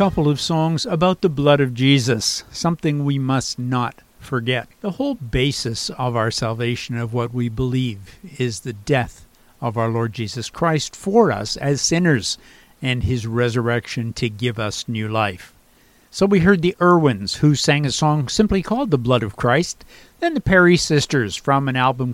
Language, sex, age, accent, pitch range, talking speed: English, male, 60-79, American, 120-160 Hz, 175 wpm